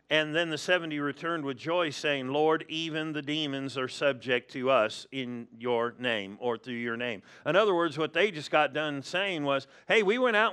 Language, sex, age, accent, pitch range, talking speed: English, male, 50-69, American, 145-200 Hz, 210 wpm